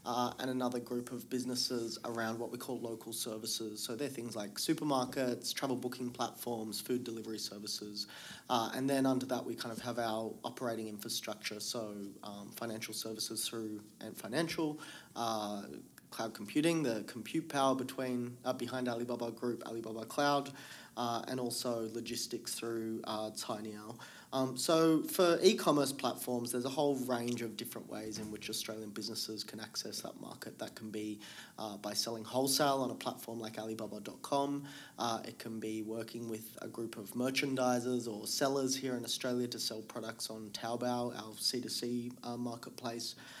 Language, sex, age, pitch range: English, male, 30-49, 110-130 Hz